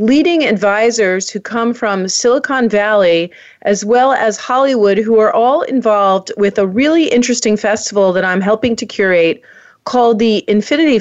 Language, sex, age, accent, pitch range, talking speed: English, female, 40-59, American, 190-235 Hz, 155 wpm